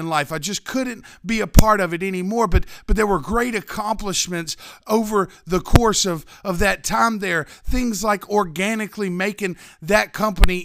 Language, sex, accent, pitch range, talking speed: English, male, American, 175-210 Hz, 175 wpm